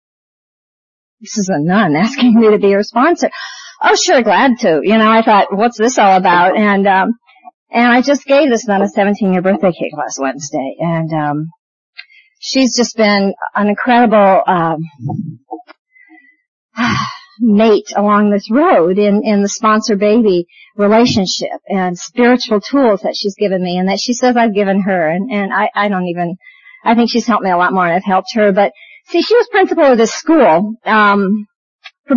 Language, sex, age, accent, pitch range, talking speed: English, female, 50-69, American, 195-250 Hz, 180 wpm